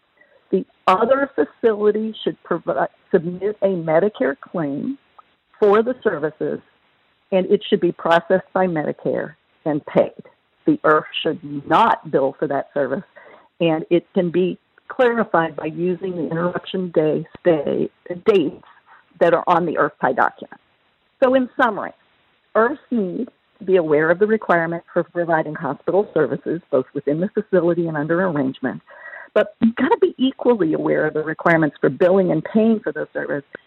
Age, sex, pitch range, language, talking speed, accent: 50-69, female, 165-225 Hz, English, 155 wpm, American